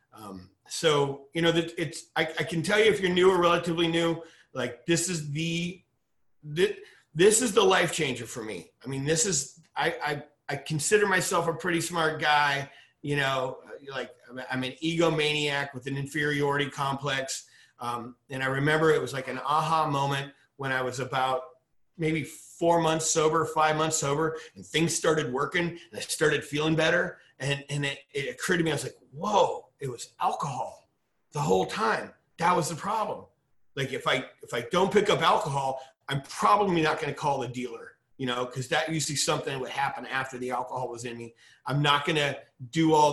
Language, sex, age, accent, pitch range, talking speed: English, male, 30-49, American, 130-160 Hz, 195 wpm